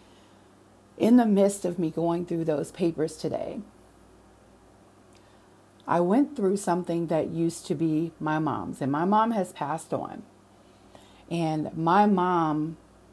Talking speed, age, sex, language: 135 wpm, 40-59, female, English